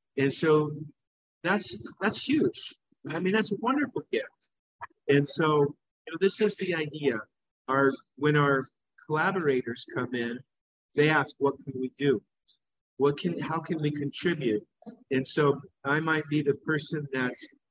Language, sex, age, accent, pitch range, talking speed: English, male, 50-69, American, 130-155 Hz, 155 wpm